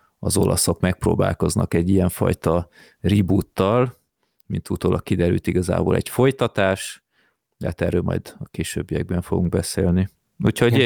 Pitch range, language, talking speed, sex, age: 90-110 Hz, Hungarian, 120 wpm, male, 30-49